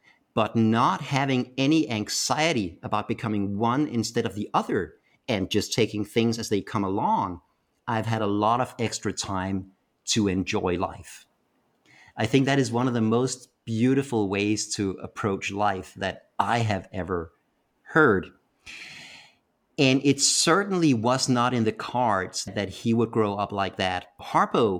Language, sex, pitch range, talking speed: English, male, 105-130 Hz, 155 wpm